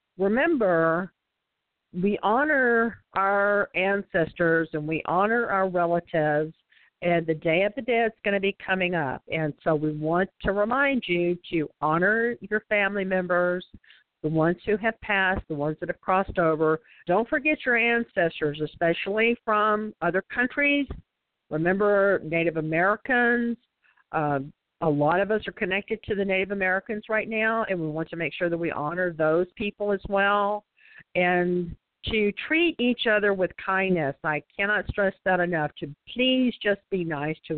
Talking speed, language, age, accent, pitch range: 160 wpm, English, 50-69, American, 170-215 Hz